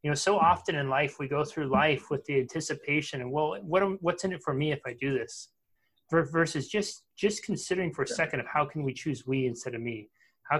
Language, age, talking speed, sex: English, 30-49, 240 wpm, male